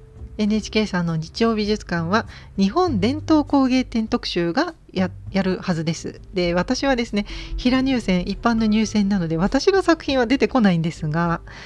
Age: 40-59